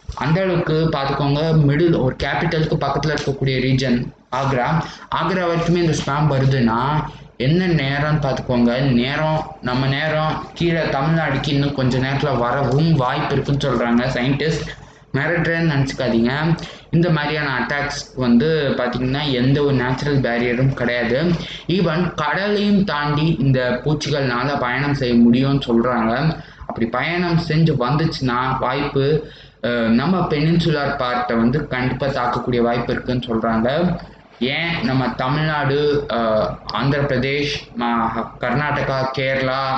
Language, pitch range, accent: Tamil, 125-155 Hz, native